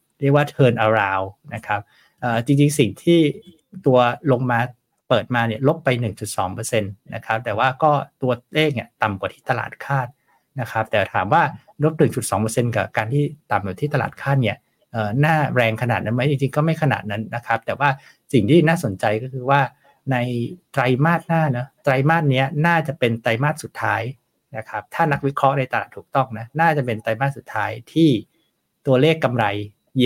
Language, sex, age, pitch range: Thai, male, 60-79, 110-145 Hz